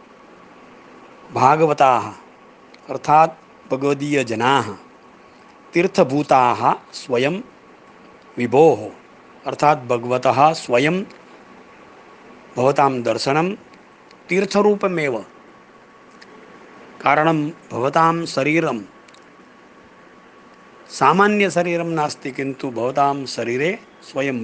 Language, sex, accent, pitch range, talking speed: Malayalam, male, native, 140-180 Hz, 35 wpm